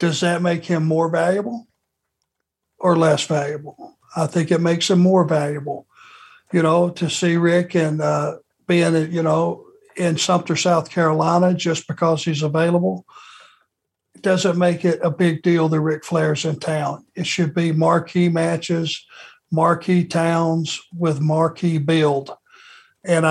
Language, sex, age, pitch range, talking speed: English, male, 60-79, 160-180 Hz, 145 wpm